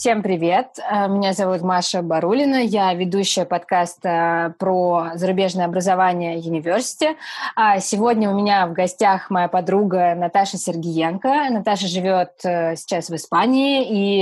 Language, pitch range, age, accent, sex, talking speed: Russian, 185-225 Hz, 20-39, native, female, 120 wpm